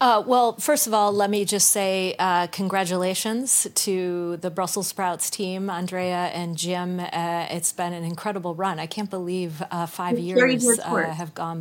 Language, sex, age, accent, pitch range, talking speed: English, female, 30-49, American, 175-205 Hz, 175 wpm